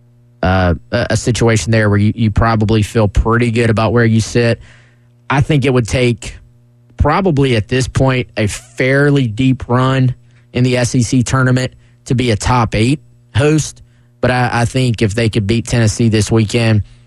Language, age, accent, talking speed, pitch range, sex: English, 20-39, American, 175 wpm, 110-125 Hz, male